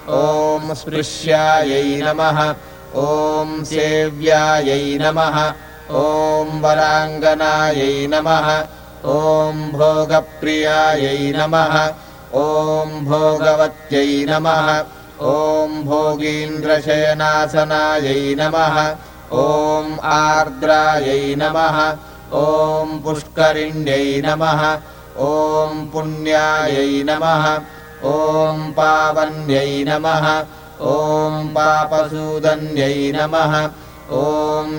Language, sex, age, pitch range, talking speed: Hebrew, male, 30-49, 150-155 Hz, 70 wpm